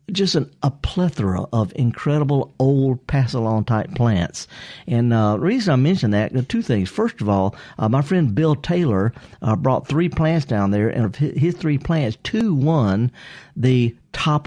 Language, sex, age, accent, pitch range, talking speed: English, male, 50-69, American, 110-150 Hz, 165 wpm